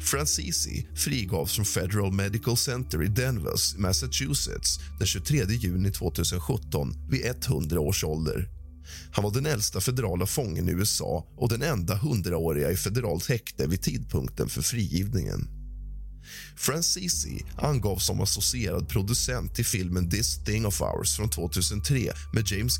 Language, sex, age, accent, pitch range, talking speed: Swedish, male, 30-49, native, 75-110 Hz, 135 wpm